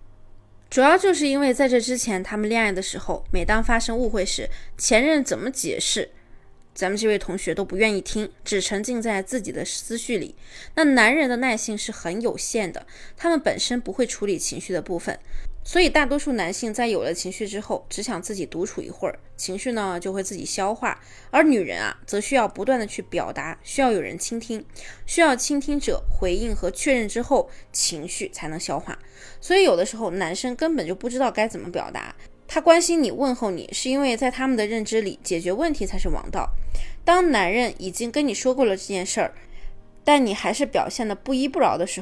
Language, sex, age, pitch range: Chinese, female, 20-39, 190-260 Hz